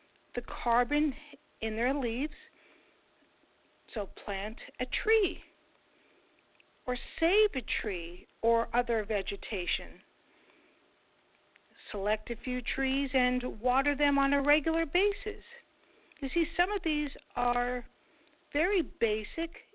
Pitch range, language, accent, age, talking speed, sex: 215-295 Hz, English, American, 50-69, 105 wpm, female